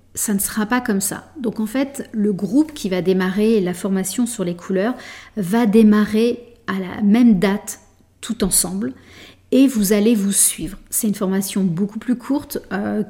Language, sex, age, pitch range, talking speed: French, female, 40-59, 195-225 Hz, 180 wpm